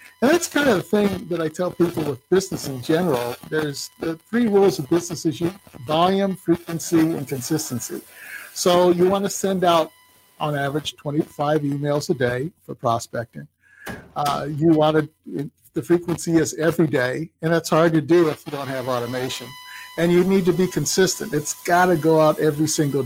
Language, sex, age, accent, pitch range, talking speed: English, male, 50-69, American, 150-175 Hz, 180 wpm